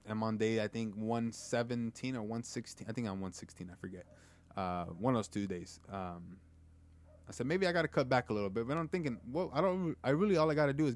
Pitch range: 95-140 Hz